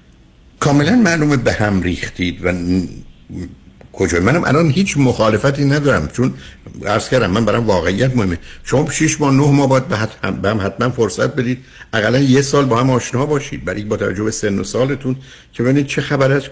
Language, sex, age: Persian, male, 60-79